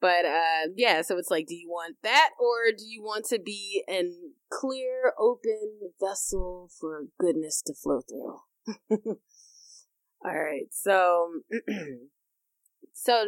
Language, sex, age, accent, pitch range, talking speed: English, female, 20-39, American, 155-240 Hz, 130 wpm